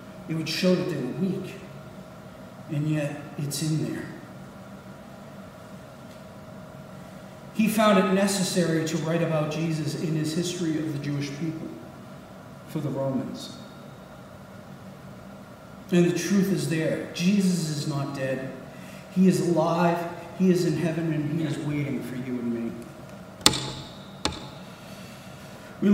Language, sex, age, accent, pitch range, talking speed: English, male, 50-69, American, 145-185 Hz, 125 wpm